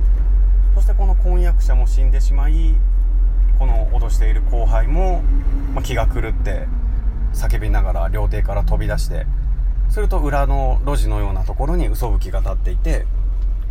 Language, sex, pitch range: Japanese, male, 70-105 Hz